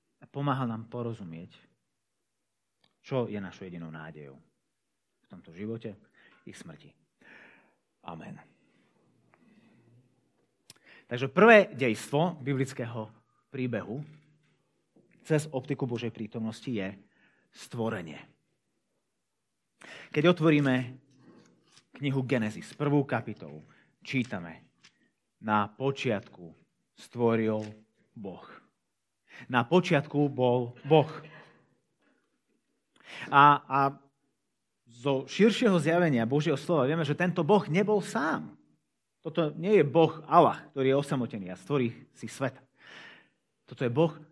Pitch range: 120-160 Hz